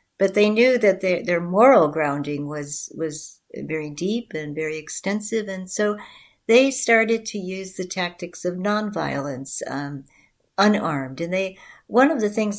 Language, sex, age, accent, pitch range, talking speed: English, female, 60-79, American, 150-195 Hz, 155 wpm